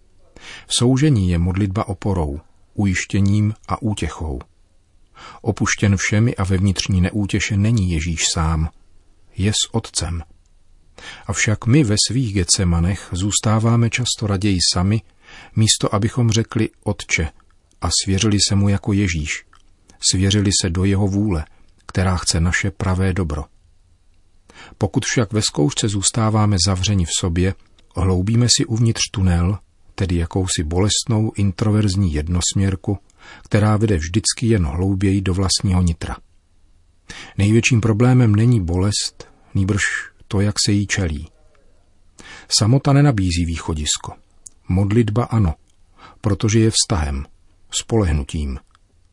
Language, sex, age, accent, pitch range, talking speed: Czech, male, 40-59, native, 90-110 Hz, 115 wpm